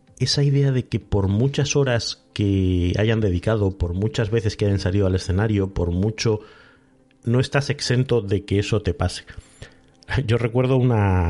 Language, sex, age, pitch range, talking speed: Spanish, male, 30-49, 95-120 Hz, 165 wpm